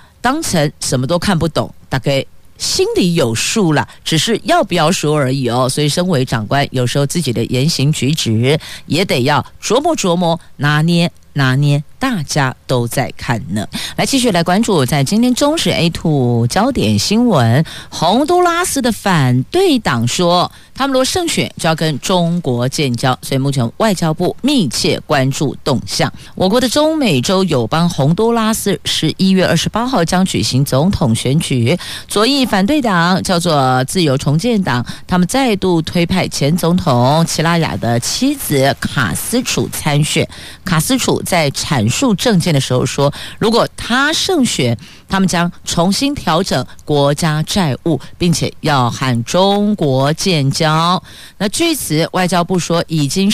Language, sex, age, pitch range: Chinese, female, 50-69, 140-200 Hz